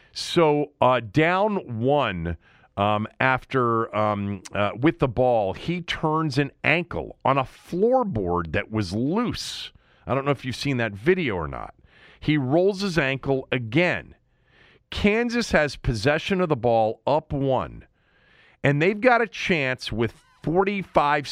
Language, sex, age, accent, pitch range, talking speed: English, male, 50-69, American, 120-175 Hz, 145 wpm